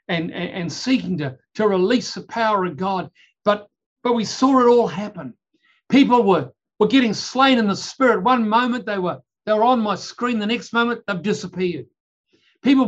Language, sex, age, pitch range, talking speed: English, male, 60-79, 175-240 Hz, 185 wpm